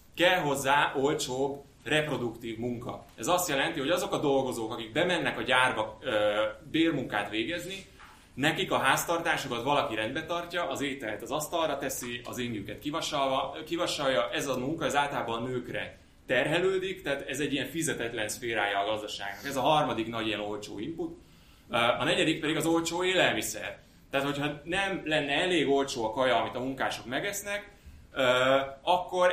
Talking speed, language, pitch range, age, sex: 150 wpm, Hungarian, 120-165 Hz, 20-39, male